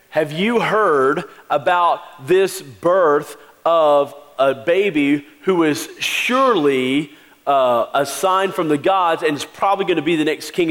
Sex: male